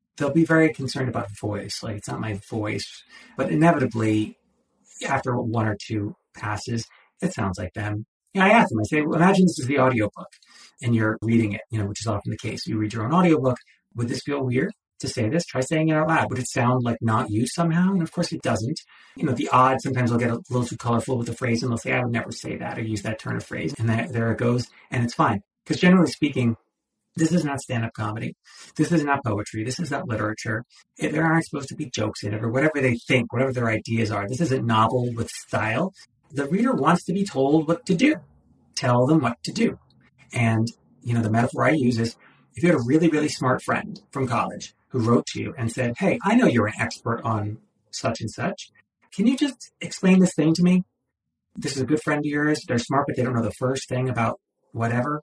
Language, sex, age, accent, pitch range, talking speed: English, male, 30-49, American, 115-155 Hz, 240 wpm